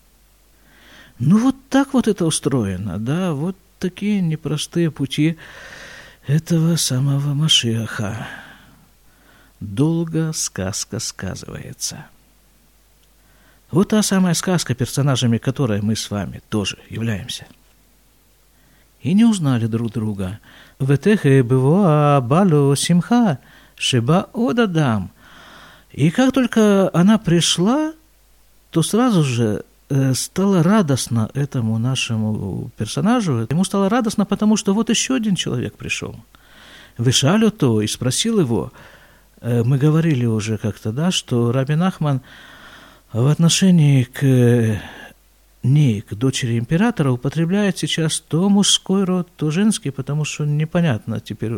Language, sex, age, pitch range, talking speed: Russian, male, 50-69, 120-180 Hz, 110 wpm